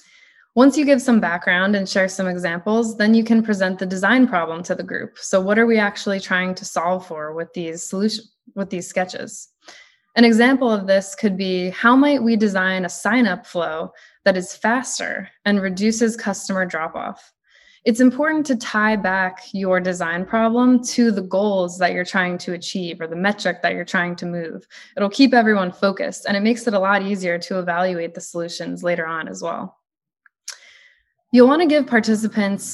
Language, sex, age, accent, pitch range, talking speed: English, female, 20-39, American, 185-230 Hz, 185 wpm